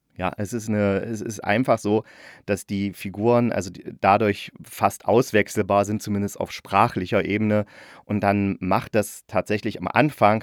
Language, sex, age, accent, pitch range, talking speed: German, male, 30-49, German, 100-115 Hz, 140 wpm